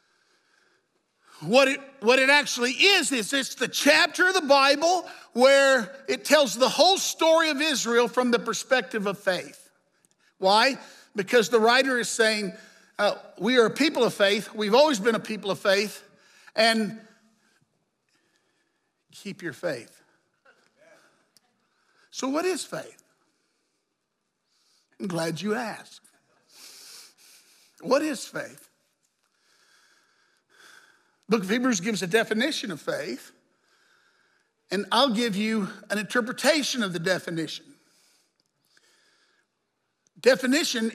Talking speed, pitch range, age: 115 wpm, 210-290 Hz, 60-79